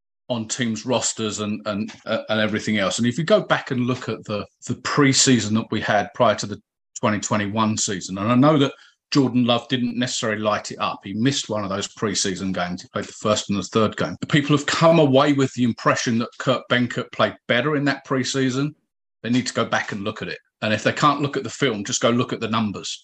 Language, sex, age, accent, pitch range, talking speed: English, male, 40-59, British, 110-135 Hz, 240 wpm